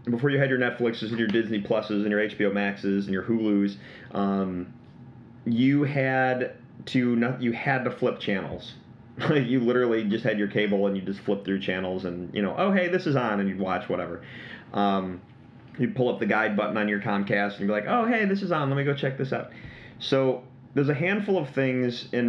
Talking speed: 220 wpm